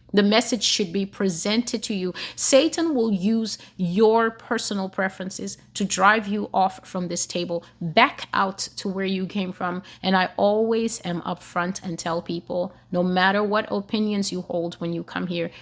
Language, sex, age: English, female, 30-49